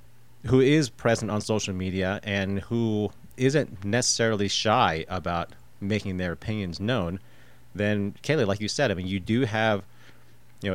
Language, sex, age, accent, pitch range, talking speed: English, male, 30-49, American, 100-125 Hz, 150 wpm